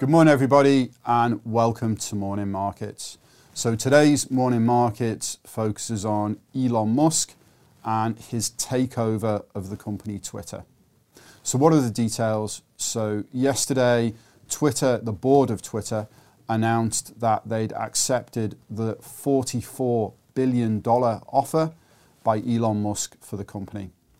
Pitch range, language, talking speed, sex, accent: 110-125 Hz, English, 120 wpm, male, British